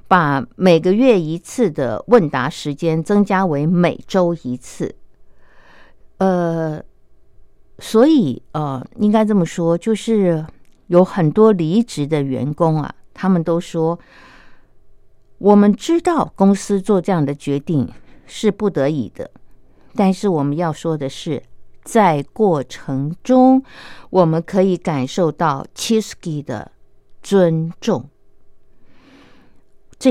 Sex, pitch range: female, 155-215 Hz